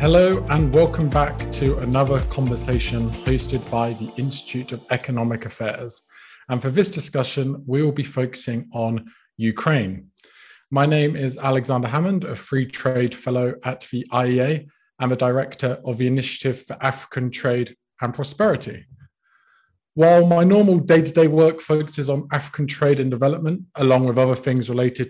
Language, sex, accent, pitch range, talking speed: English, male, British, 125-145 Hz, 155 wpm